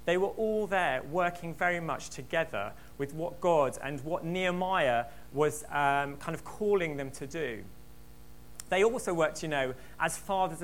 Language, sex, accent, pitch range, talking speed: English, male, British, 130-180 Hz, 165 wpm